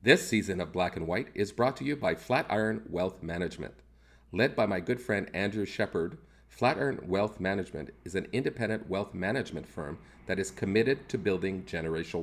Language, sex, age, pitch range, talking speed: English, male, 40-59, 90-130 Hz, 175 wpm